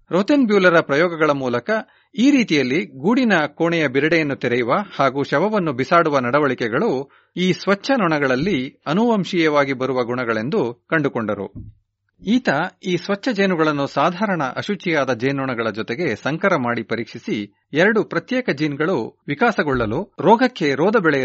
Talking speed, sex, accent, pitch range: 105 wpm, male, native, 130-185 Hz